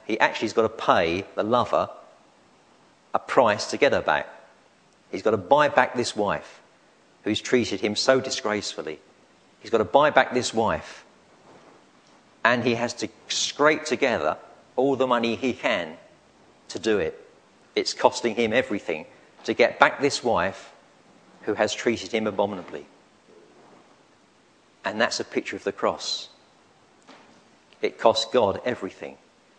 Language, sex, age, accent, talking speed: English, male, 50-69, British, 145 wpm